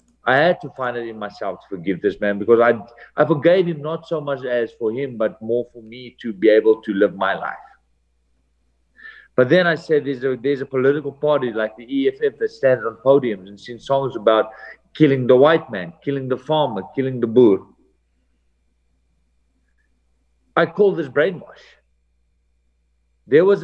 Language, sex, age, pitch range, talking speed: English, male, 50-69, 105-150 Hz, 175 wpm